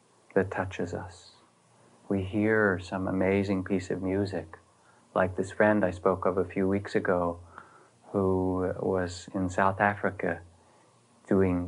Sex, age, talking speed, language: male, 30-49, 135 wpm, English